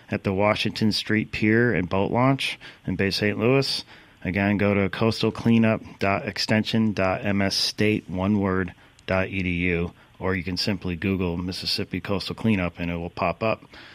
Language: English